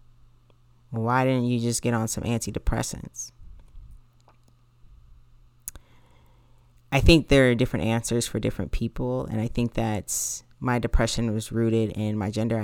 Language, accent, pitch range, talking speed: English, American, 105-120 Hz, 135 wpm